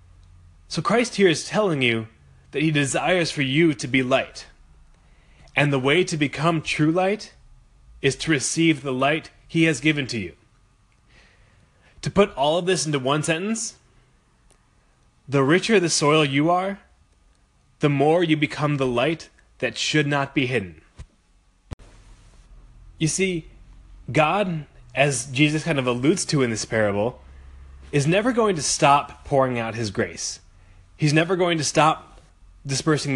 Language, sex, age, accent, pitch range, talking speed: English, male, 20-39, American, 95-160 Hz, 150 wpm